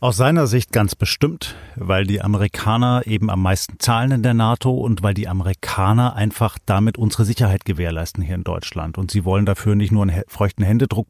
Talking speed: 195 wpm